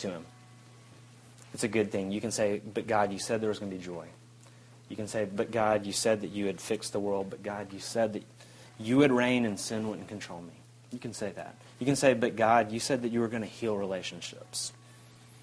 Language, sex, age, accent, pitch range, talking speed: English, male, 30-49, American, 105-125 Hz, 245 wpm